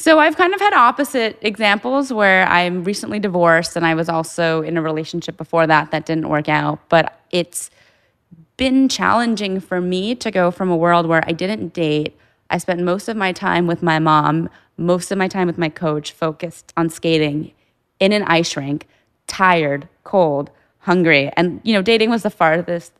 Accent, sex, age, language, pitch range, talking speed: American, female, 20-39, English, 160-195 Hz, 190 wpm